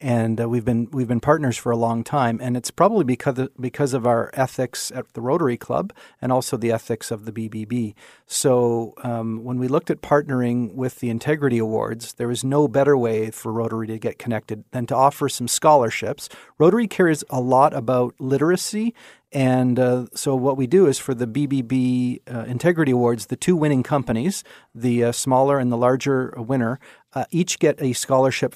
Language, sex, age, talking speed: English, male, 40-59, 195 wpm